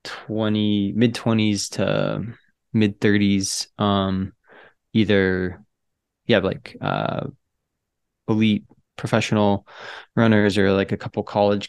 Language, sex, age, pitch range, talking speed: English, male, 20-39, 95-110 Hz, 90 wpm